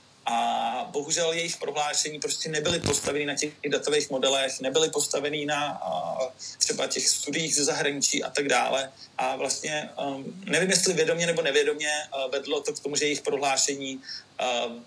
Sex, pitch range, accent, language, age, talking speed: male, 130-160 Hz, native, Czech, 40-59, 160 wpm